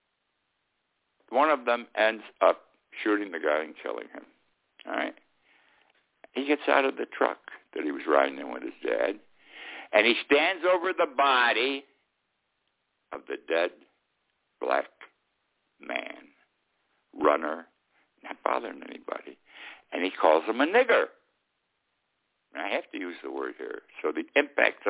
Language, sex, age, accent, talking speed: English, male, 60-79, American, 140 wpm